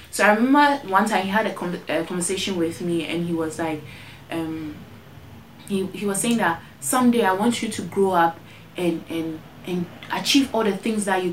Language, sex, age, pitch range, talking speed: English, female, 20-39, 170-220 Hz, 205 wpm